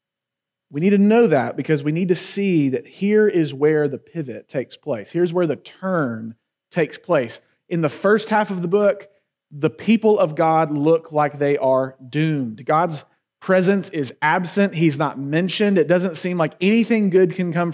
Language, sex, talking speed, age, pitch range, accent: English, male, 185 wpm, 30-49, 140-185 Hz, American